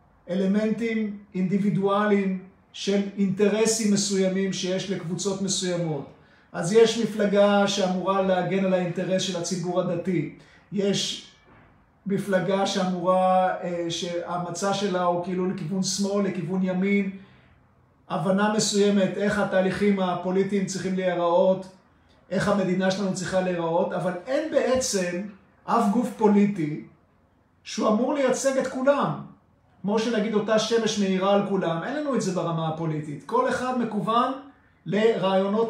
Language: Hebrew